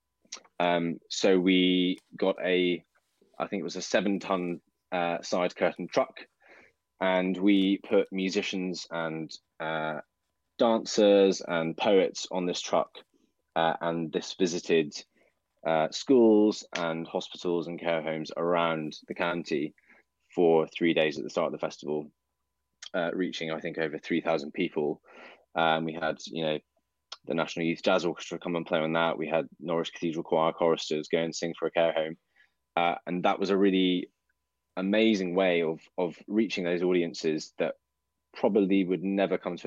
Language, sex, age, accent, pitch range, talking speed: English, male, 20-39, British, 80-90 Hz, 160 wpm